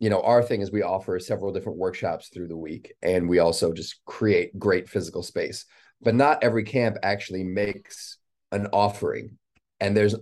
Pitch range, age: 100-125 Hz, 30-49